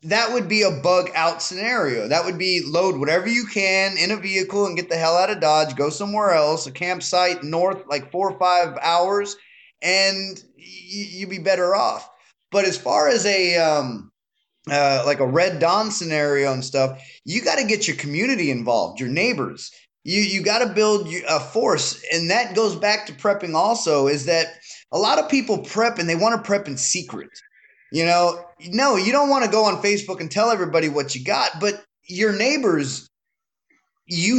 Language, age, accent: English, 20-39, American